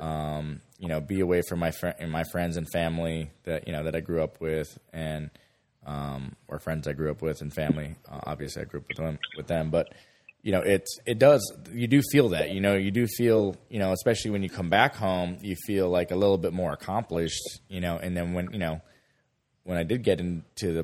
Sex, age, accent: male, 20-39, American